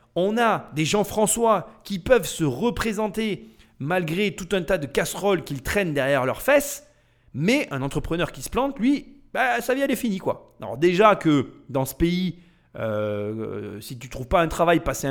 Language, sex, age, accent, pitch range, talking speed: French, male, 30-49, French, 125-190 Hz, 180 wpm